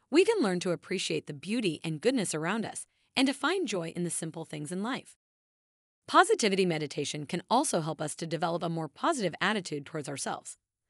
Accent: American